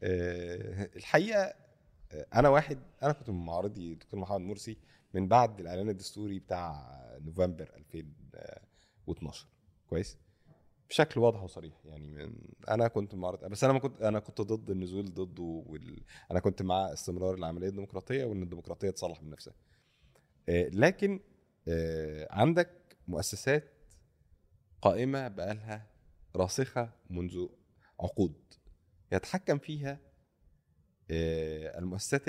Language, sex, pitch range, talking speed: Arabic, male, 85-130 Hz, 110 wpm